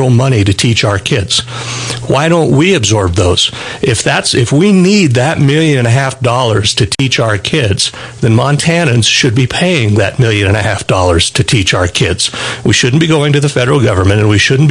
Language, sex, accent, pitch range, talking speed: English, male, American, 110-140 Hz, 210 wpm